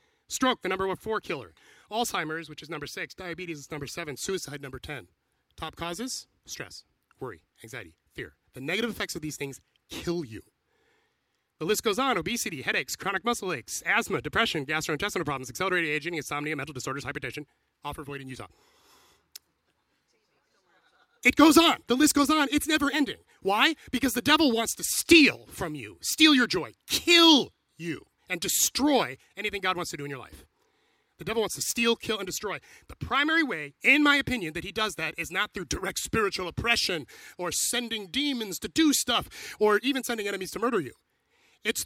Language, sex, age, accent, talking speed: English, male, 30-49, American, 180 wpm